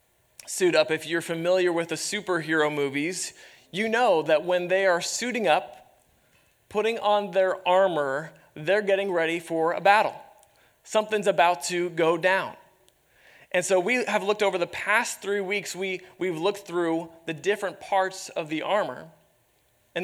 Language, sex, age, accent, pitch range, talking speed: English, male, 30-49, American, 165-200 Hz, 160 wpm